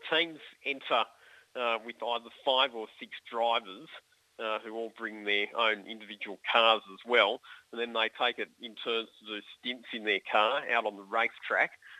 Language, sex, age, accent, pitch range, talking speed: English, male, 40-59, Australian, 105-120 Hz, 180 wpm